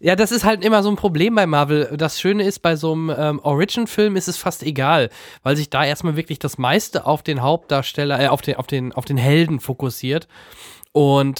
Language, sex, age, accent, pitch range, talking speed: German, male, 20-39, German, 130-160 Hz, 220 wpm